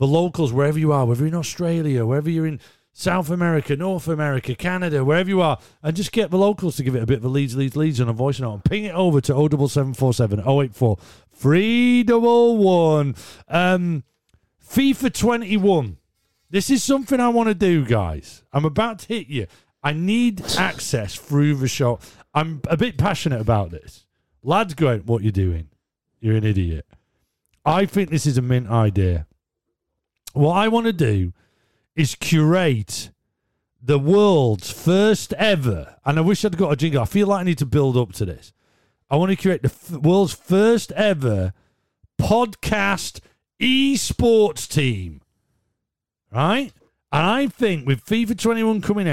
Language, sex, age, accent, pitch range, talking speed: English, male, 40-59, British, 120-200 Hz, 170 wpm